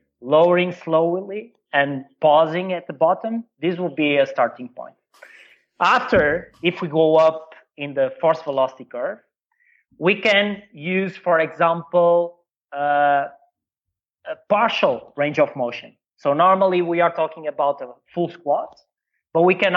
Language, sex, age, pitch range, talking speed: English, male, 30-49, 140-175 Hz, 140 wpm